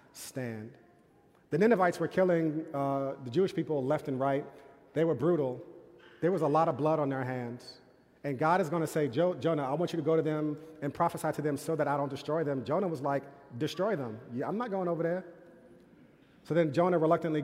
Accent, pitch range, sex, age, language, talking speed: American, 140-175 Hz, male, 30-49, English, 215 wpm